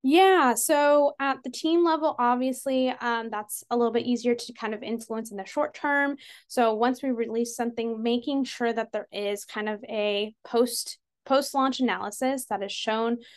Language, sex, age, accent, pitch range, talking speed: English, female, 20-39, American, 215-265 Hz, 175 wpm